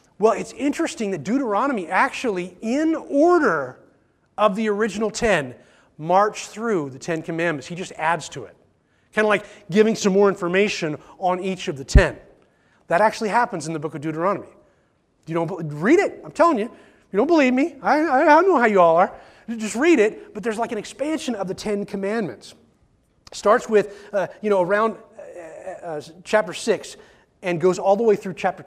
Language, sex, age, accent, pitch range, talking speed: English, male, 30-49, American, 165-220 Hz, 195 wpm